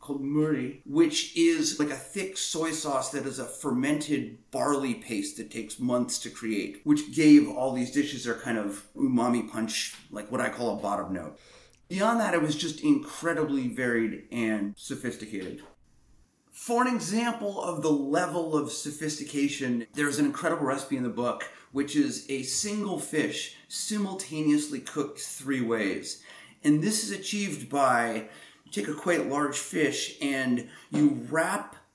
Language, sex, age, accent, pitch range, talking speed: English, male, 30-49, American, 135-225 Hz, 155 wpm